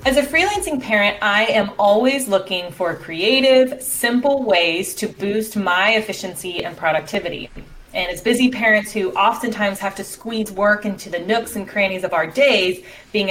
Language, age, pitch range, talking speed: English, 20-39, 180-225 Hz, 165 wpm